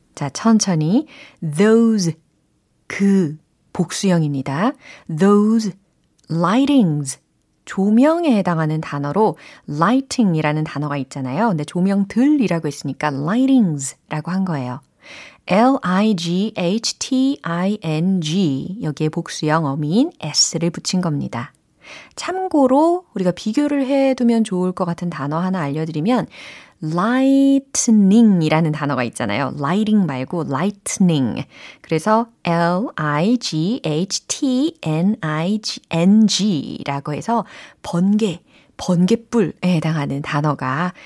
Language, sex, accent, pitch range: Korean, female, native, 155-230 Hz